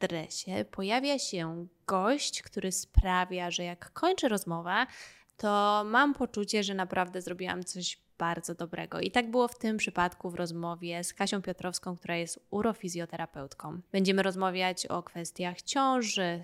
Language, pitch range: Polish, 175-225 Hz